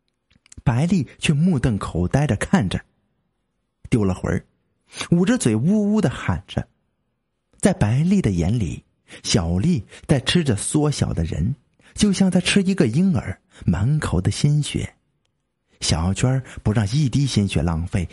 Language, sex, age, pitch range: Chinese, male, 50-69, 95-145 Hz